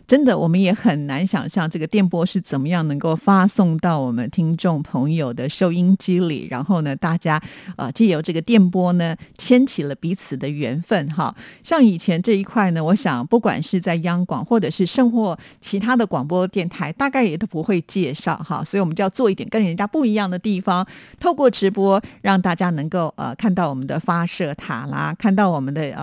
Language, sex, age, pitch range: Chinese, female, 50-69, 160-210 Hz